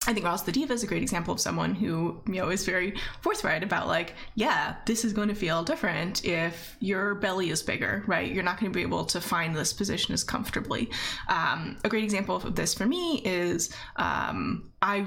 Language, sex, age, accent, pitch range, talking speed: English, female, 20-39, American, 185-235 Hz, 220 wpm